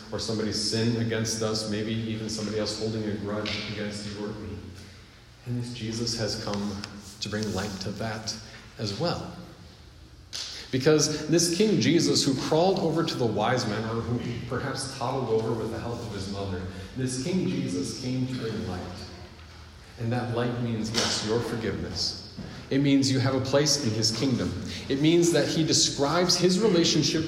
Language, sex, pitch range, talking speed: English, male, 110-150 Hz, 180 wpm